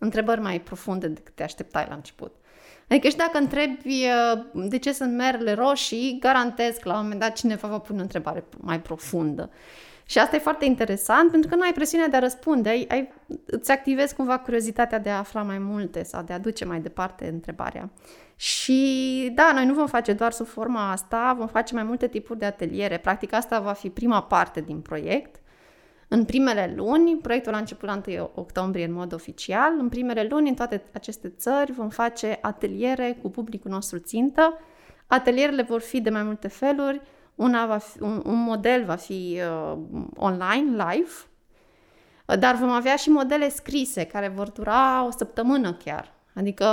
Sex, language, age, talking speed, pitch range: female, Romanian, 20-39, 180 wpm, 200-260 Hz